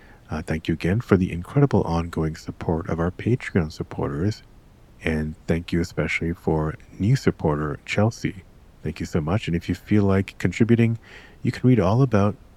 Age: 40-59